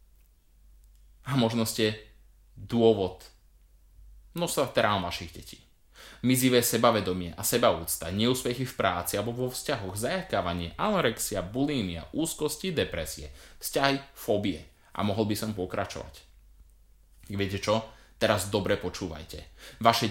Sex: male